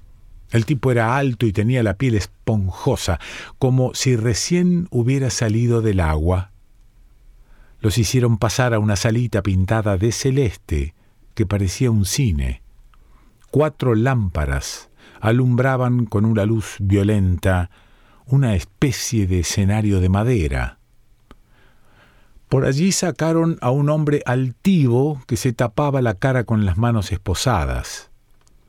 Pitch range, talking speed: 100-130 Hz, 120 wpm